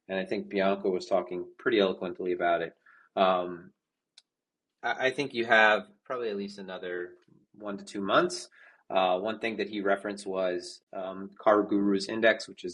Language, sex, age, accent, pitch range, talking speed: English, male, 30-49, American, 95-120 Hz, 175 wpm